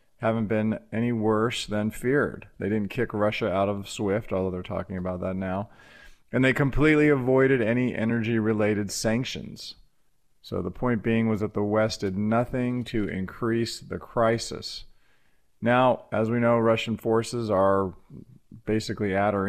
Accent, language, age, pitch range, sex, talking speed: American, English, 40-59, 100-115 Hz, male, 155 wpm